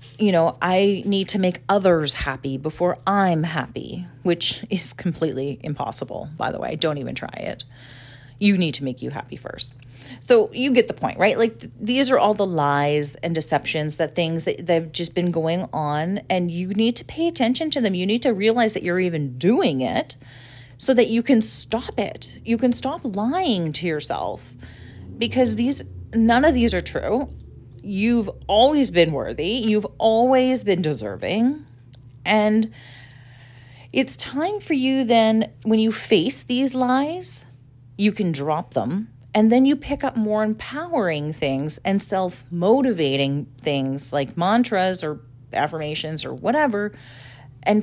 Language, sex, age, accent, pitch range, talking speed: English, female, 30-49, American, 140-225 Hz, 165 wpm